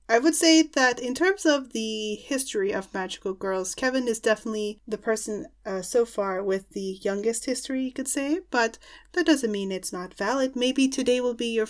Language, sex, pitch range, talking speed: English, female, 200-275 Hz, 200 wpm